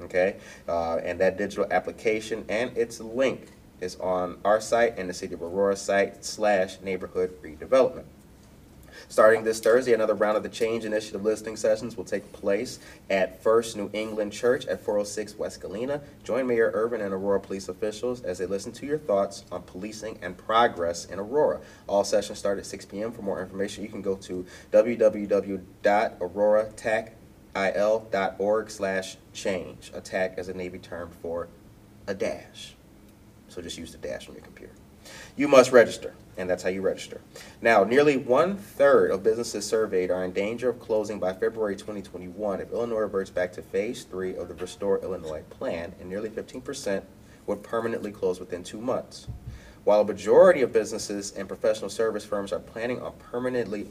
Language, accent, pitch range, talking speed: English, American, 95-115 Hz, 170 wpm